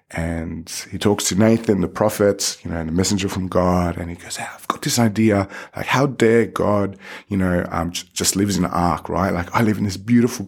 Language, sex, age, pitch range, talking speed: English, male, 30-49, 85-115 Hz, 240 wpm